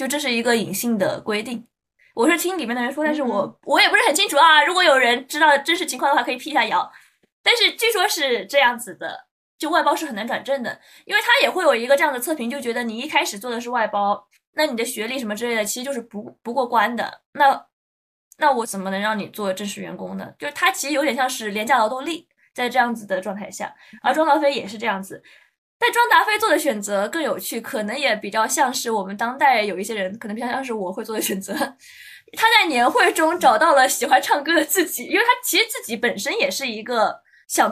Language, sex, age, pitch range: Chinese, female, 20-39, 225-310 Hz